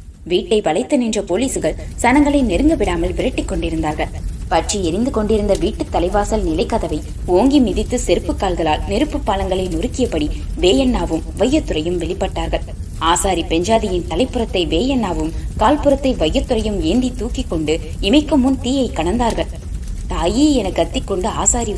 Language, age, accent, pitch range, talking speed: Tamil, 20-39, native, 180-280 Hz, 115 wpm